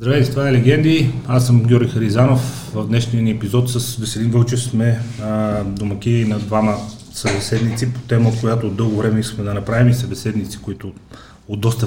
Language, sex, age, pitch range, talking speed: Bulgarian, male, 30-49, 110-125 Hz, 170 wpm